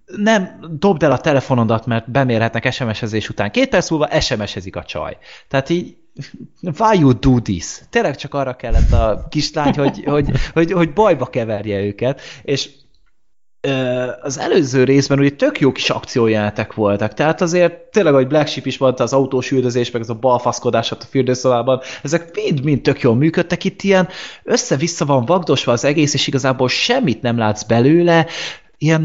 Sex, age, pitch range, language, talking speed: male, 20-39, 125-165 Hz, Hungarian, 160 wpm